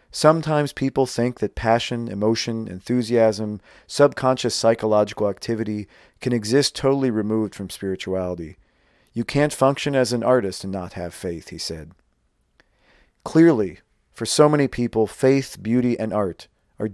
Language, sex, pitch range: English, male, 100-125 Hz